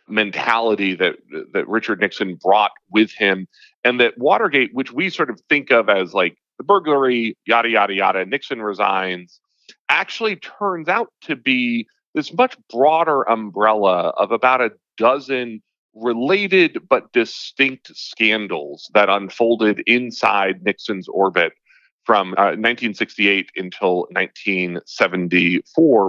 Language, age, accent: English, 40-59, American